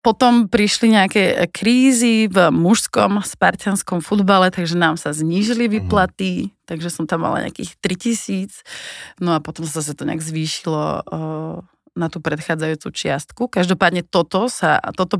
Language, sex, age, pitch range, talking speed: Slovak, female, 30-49, 160-190 Hz, 135 wpm